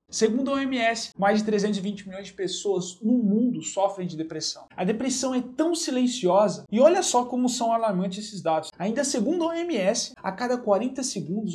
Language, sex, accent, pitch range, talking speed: Portuguese, male, Brazilian, 185-230 Hz, 180 wpm